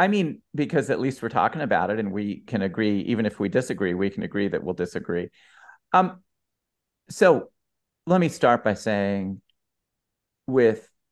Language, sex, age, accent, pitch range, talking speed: English, male, 50-69, American, 95-120 Hz, 165 wpm